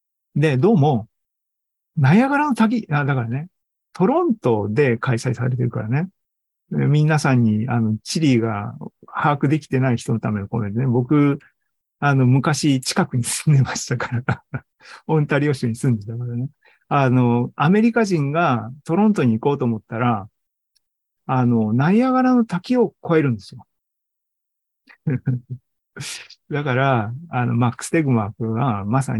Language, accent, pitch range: Japanese, native, 120-165 Hz